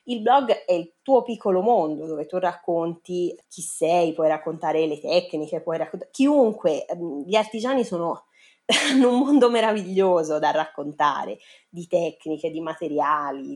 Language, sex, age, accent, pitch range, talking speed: Italian, female, 20-39, native, 160-200 Hz, 140 wpm